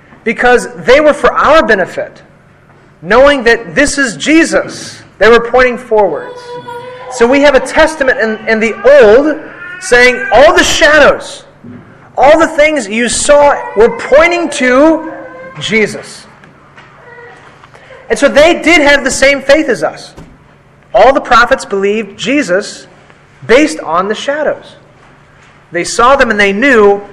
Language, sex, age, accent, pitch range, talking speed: English, male, 30-49, American, 205-290 Hz, 135 wpm